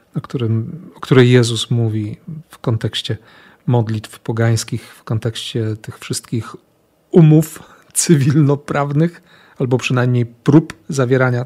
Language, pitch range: Polish, 120-145 Hz